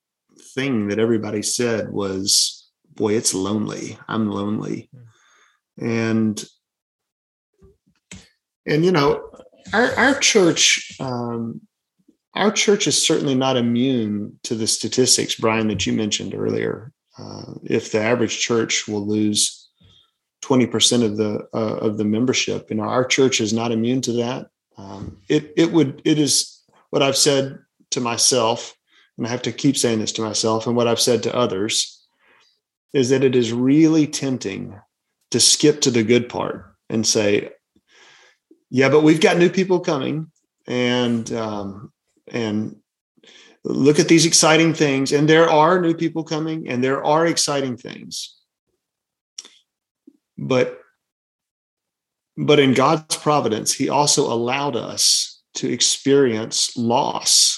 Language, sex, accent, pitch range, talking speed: English, male, American, 110-150 Hz, 140 wpm